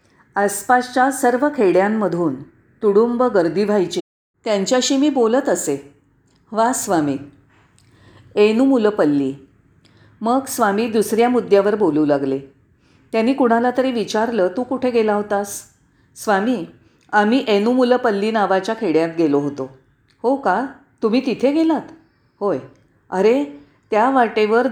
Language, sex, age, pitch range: Marathi, female, 40-59, 160-245 Hz